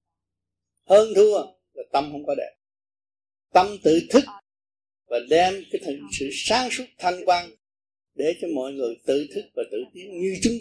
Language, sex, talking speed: Vietnamese, male, 165 wpm